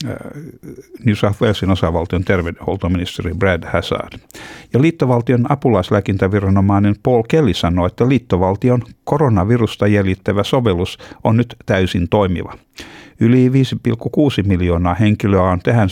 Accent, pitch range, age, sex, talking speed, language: native, 90-115 Hz, 60-79, male, 105 wpm, Finnish